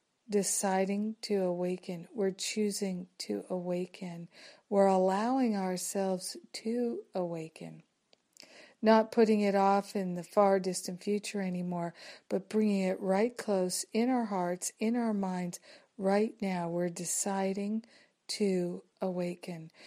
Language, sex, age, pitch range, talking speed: English, female, 50-69, 185-220 Hz, 120 wpm